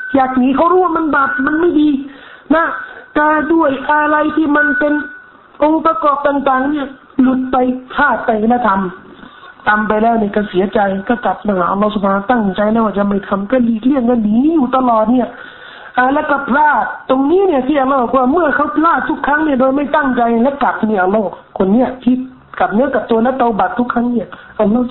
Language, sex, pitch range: Thai, male, 230-305 Hz